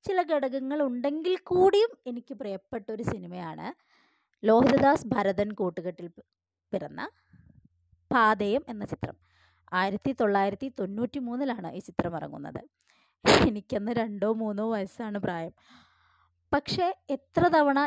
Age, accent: 20-39, native